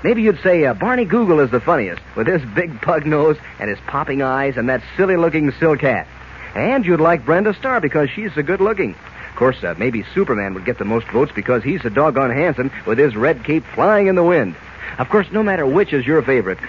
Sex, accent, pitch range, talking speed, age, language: male, American, 130-185 Hz, 225 wpm, 50-69, English